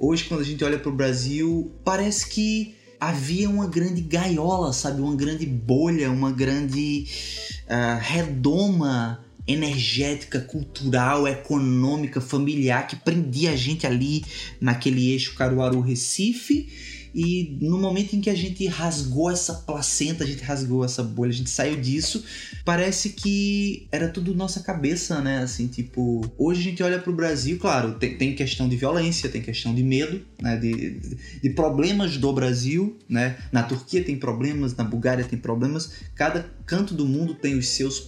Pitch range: 125-165 Hz